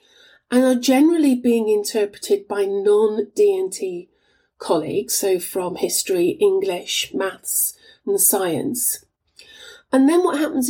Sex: female